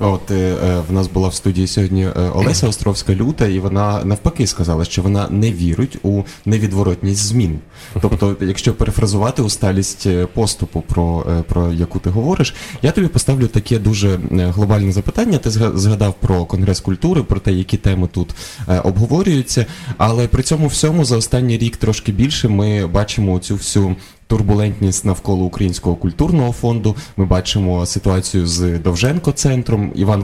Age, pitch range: 20-39, 95-115 Hz